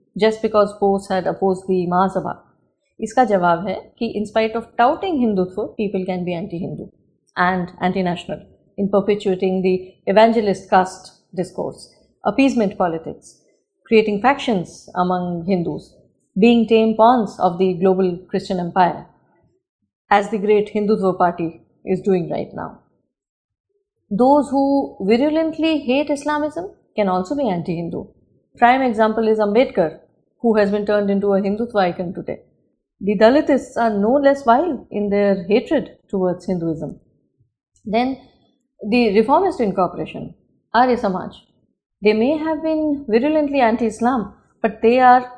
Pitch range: 190-240 Hz